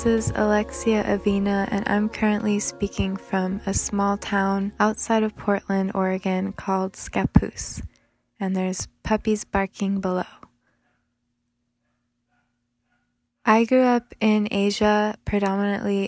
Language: English